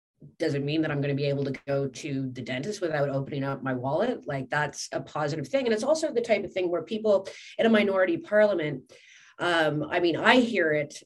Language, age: English, 30-49